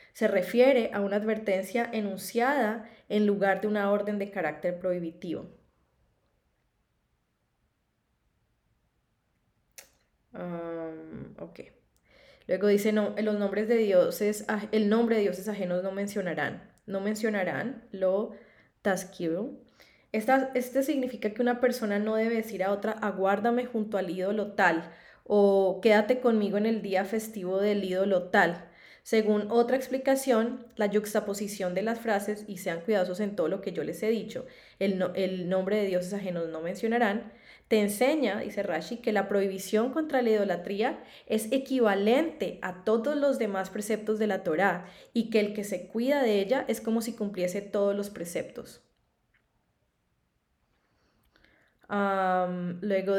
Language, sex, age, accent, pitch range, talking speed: Spanish, female, 10-29, Colombian, 190-225 Hz, 140 wpm